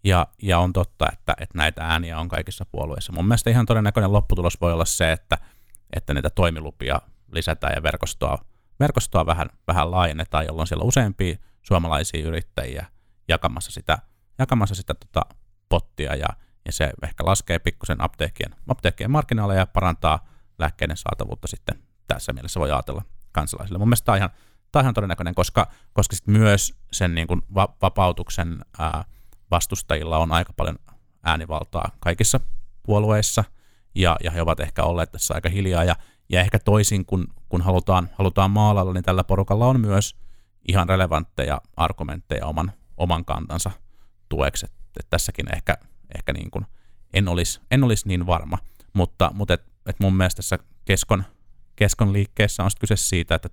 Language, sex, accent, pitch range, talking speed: Finnish, male, native, 85-100 Hz, 155 wpm